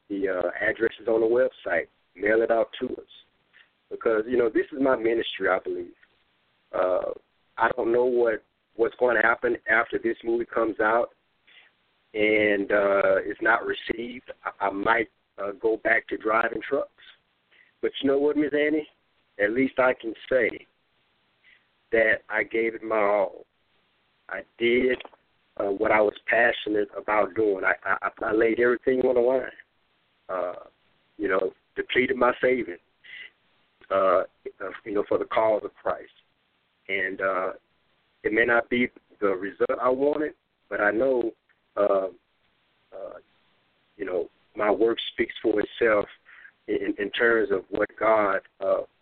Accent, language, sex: American, English, male